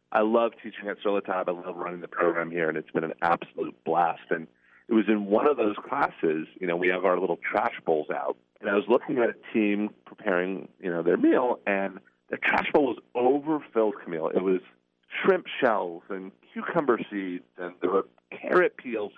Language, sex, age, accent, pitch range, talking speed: English, male, 40-59, American, 90-125 Hz, 205 wpm